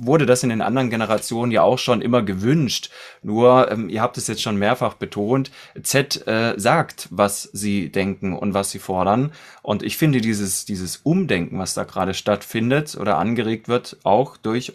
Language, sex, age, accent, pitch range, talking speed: German, male, 30-49, German, 110-135 Hz, 185 wpm